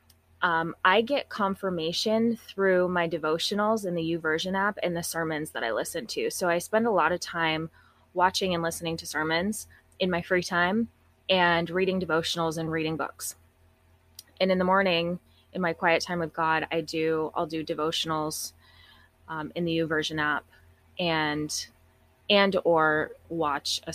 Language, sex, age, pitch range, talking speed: English, female, 20-39, 150-180 Hz, 170 wpm